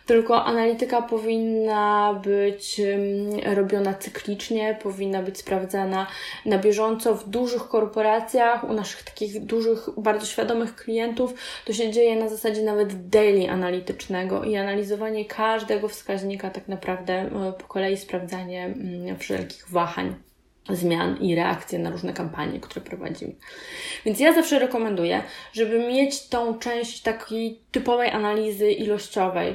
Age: 10-29